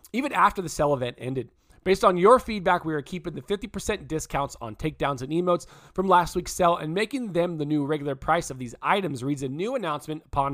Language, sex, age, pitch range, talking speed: English, male, 20-39, 140-180 Hz, 220 wpm